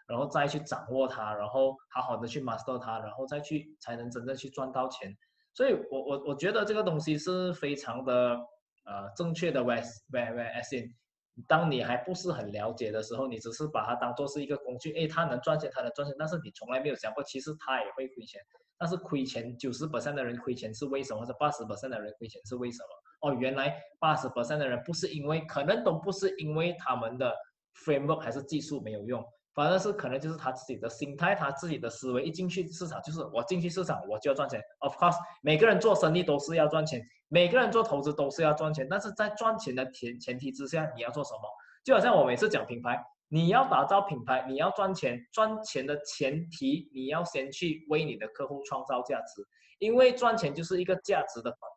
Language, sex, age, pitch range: Chinese, male, 20-39, 130-175 Hz